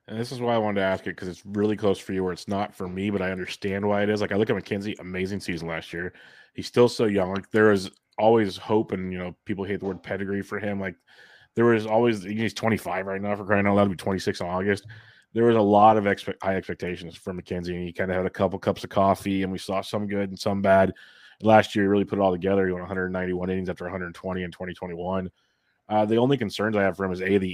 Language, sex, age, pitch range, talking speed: English, male, 20-39, 95-105 Hz, 275 wpm